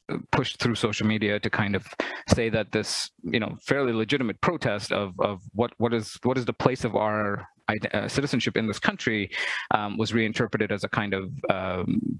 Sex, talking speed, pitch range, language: male, 190 wpm, 105-120 Hz, English